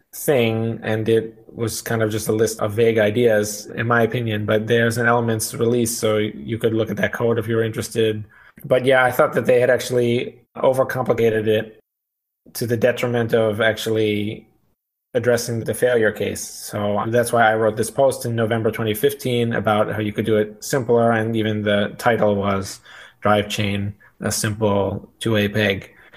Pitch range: 110-120 Hz